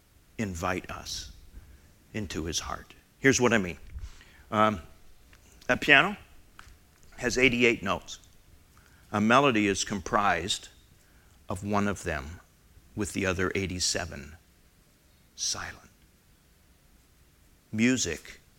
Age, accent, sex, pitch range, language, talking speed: 50-69, American, male, 80-115 Hz, English, 95 wpm